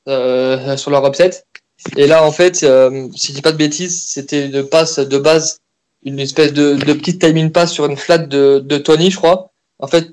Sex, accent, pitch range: male, French, 135-165 Hz